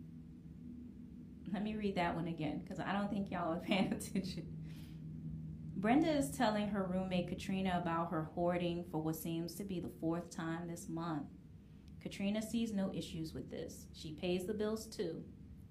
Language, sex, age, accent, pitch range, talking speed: English, female, 30-49, American, 170-220 Hz, 170 wpm